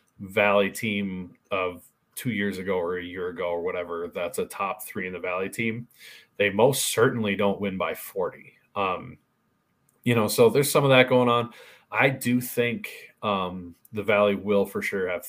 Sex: male